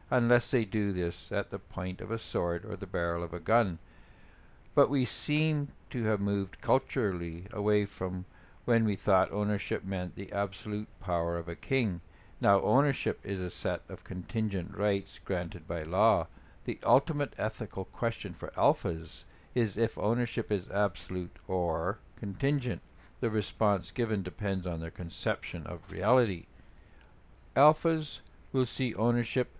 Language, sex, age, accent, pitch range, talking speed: English, male, 60-79, American, 90-115 Hz, 150 wpm